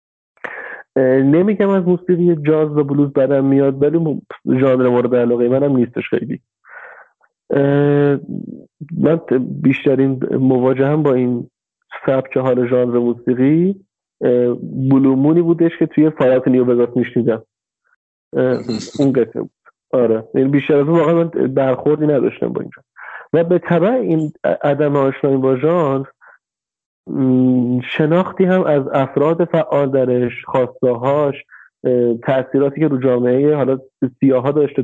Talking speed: 120 wpm